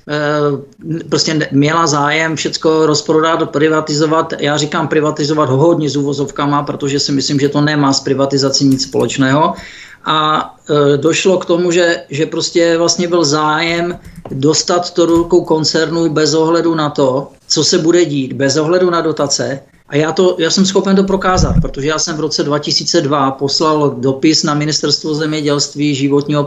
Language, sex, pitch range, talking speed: Czech, male, 145-170 Hz, 160 wpm